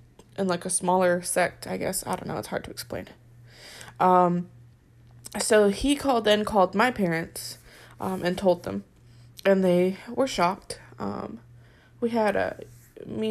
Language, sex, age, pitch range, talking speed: English, female, 20-39, 155-210 Hz, 160 wpm